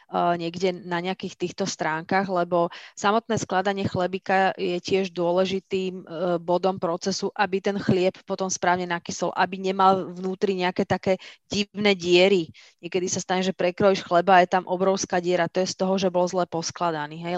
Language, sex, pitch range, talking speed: Slovak, female, 175-195 Hz, 160 wpm